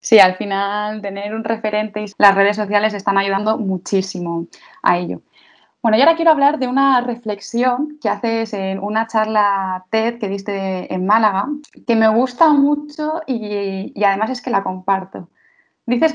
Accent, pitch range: Spanish, 200-250 Hz